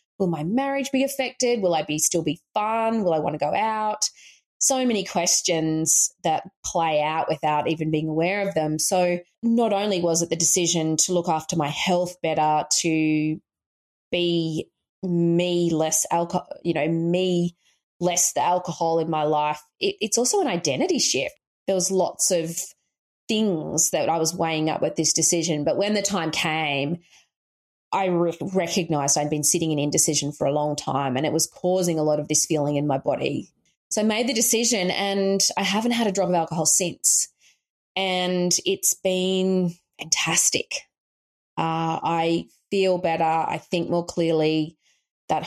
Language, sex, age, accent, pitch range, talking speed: English, female, 20-39, Australian, 155-185 Hz, 170 wpm